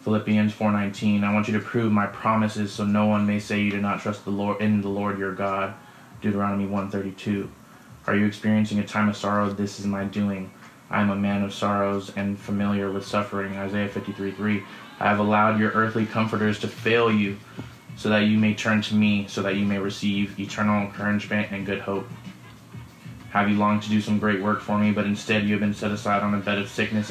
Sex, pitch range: male, 100-110 Hz